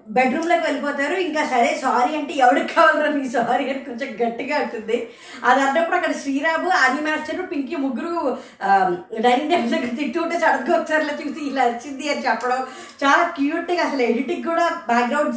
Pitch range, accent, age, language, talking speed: 250-310 Hz, native, 20-39, Telugu, 150 wpm